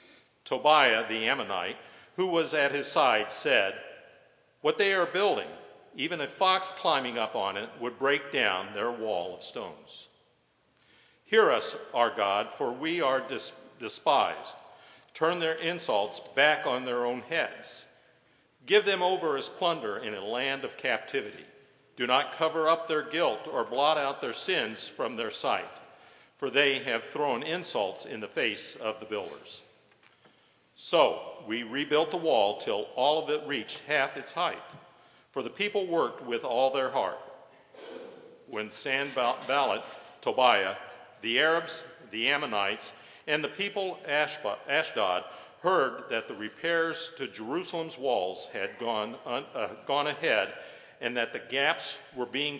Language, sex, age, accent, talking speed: English, male, 50-69, American, 145 wpm